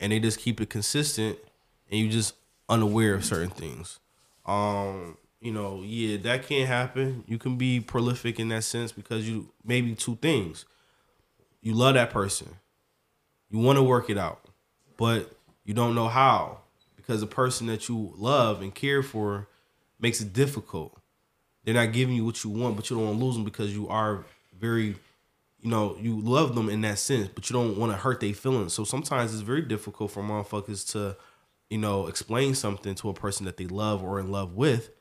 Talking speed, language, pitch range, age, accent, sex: 195 wpm, English, 105-125 Hz, 20-39, American, male